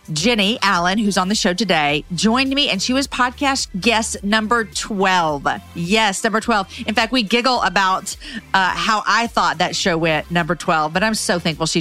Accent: American